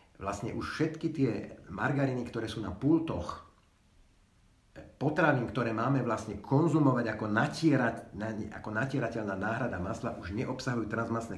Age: 50-69